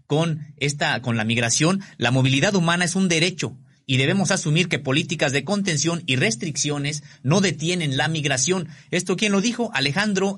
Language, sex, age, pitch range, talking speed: Spanish, male, 40-59, 130-165 Hz, 170 wpm